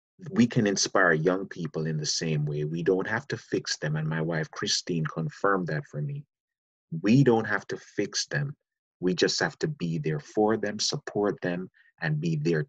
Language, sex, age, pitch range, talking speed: English, male, 30-49, 80-105 Hz, 200 wpm